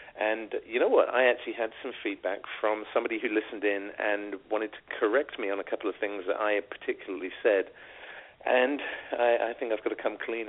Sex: male